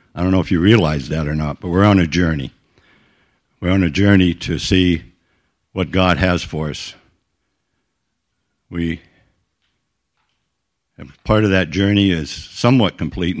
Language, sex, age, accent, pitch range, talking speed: English, male, 60-79, American, 85-100 Hz, 150 wpm